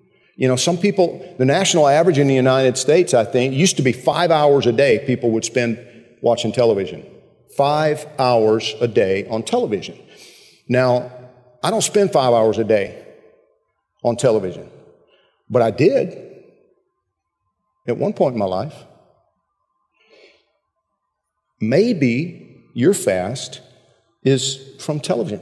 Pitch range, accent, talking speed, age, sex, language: 105-135 Hz, American, 130 wpm, 50-69, male, English